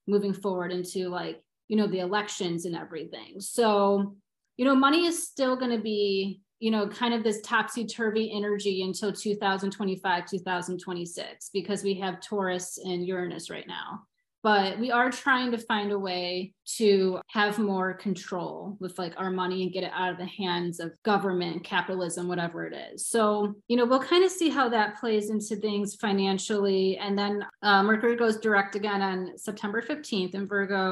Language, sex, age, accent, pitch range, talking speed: English, female, 30-49, American, 185-215 Hz, 175 wpm